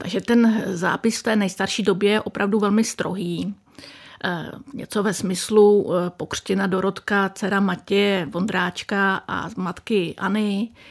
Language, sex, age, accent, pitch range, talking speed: Czech, female, 50-69, native, 185-215 Hz, 120 wpm